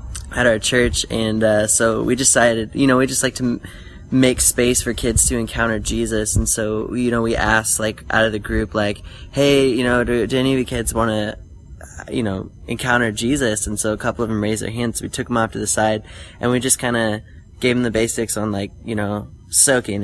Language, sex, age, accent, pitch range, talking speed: English, male, 20-39, American, 105-125 Hz, 235 wpm